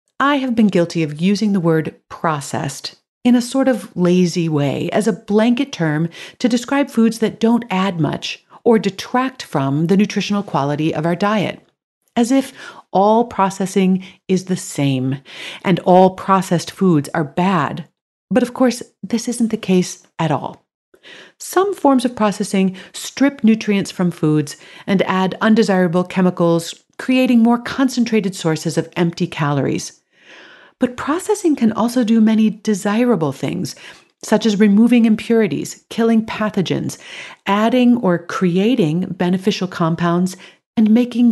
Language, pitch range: English, 170-230 Hz